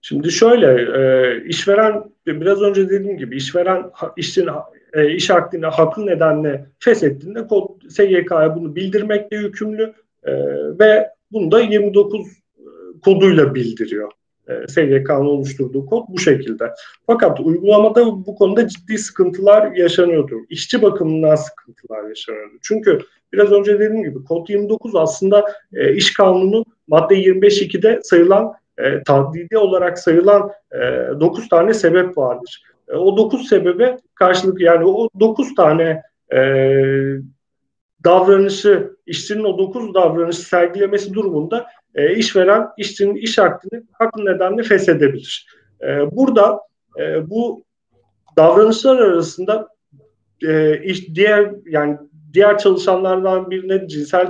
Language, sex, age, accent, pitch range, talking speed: Turkish, male, 40-59, native, 165-215 Hz, 120 wpm